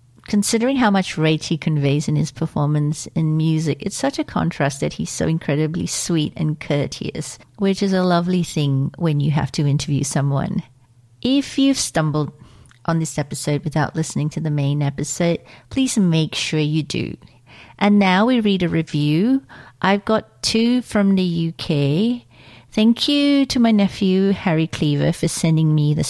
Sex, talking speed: female, 170 wpm